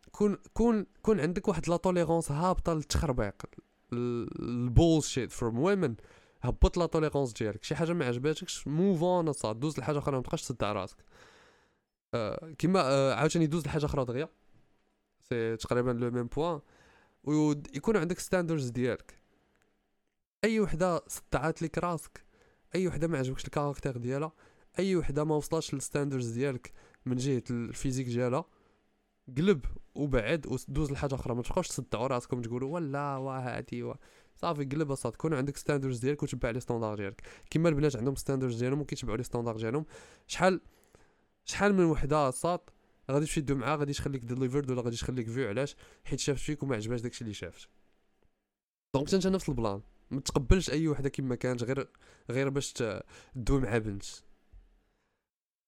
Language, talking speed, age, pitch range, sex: Arabic, 150 wpm, 20-39, 125-160 Hz, male